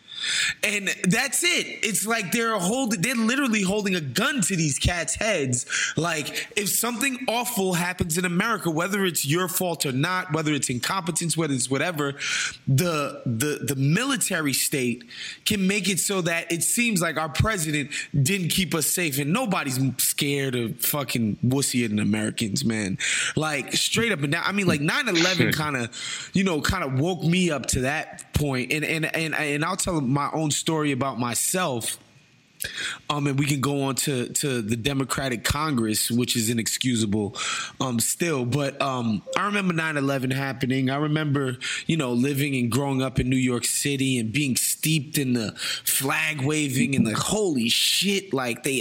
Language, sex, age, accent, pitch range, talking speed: English, male, 20-39, American, 130-185 Hz, 175 wpm